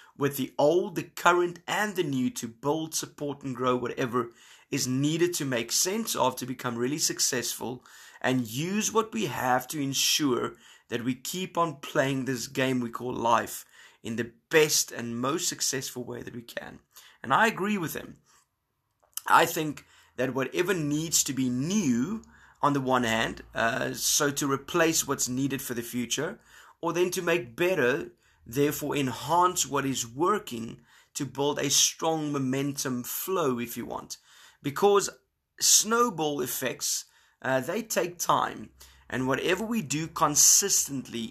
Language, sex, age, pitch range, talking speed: English, male, 20-39, 125-165 Hz, 155 wpm